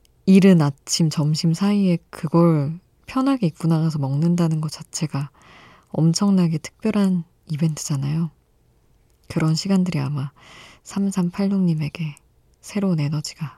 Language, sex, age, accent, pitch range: Korean, female, 20-39, native, 150-185 Hz